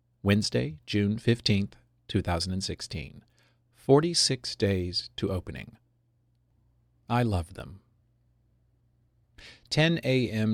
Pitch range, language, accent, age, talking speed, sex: 100-120 Hz, English, American, 40-59, 85 wpm, male